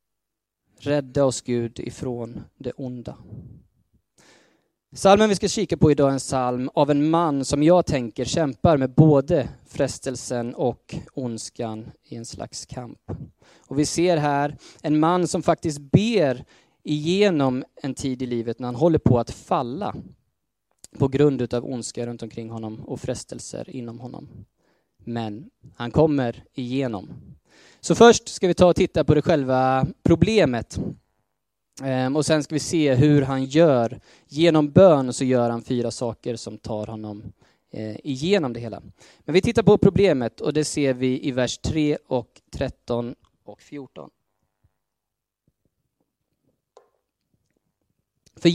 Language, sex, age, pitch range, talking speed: Swedish, male, 20-39, 120-155 Hz, 140 wpm